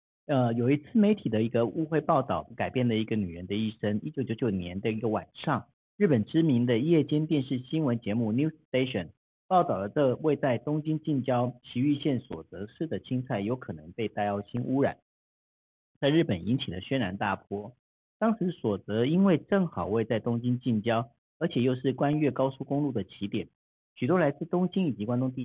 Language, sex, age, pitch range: Chinese, male, 50-69, 100-135 Hz